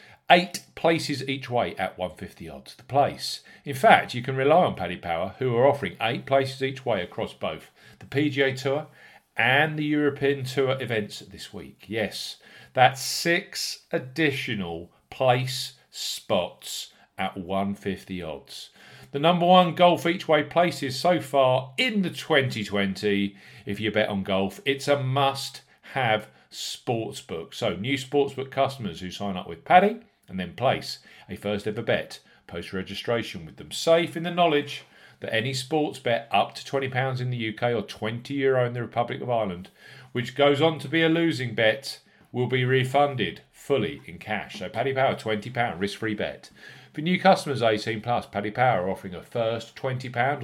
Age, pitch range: 40-59, 105-145 Hz